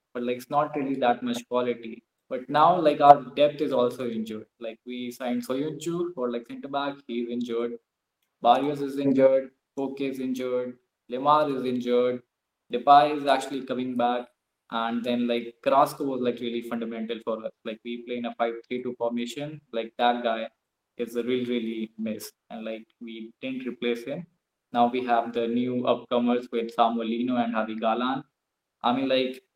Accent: Indian